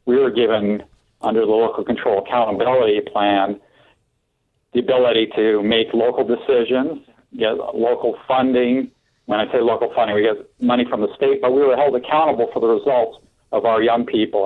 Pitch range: 110-135 Hz